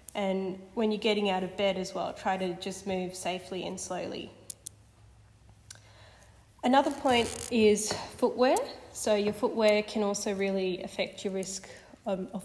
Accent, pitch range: Australian, 190-215 Hz